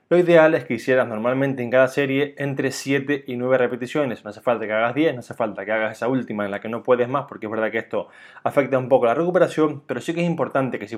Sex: male